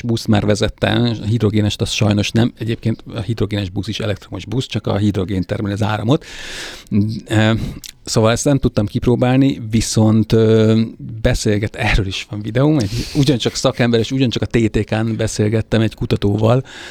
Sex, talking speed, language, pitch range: male, 150 wpm, Hungarian, 105-120 Hz